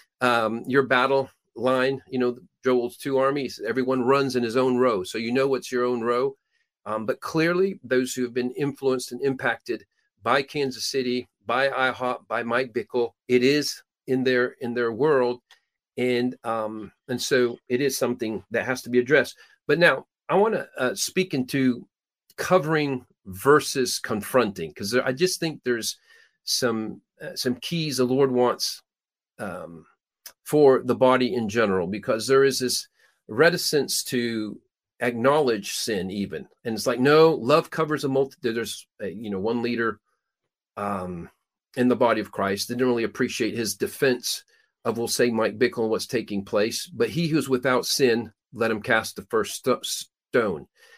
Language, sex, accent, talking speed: English, male, American, 165 wpm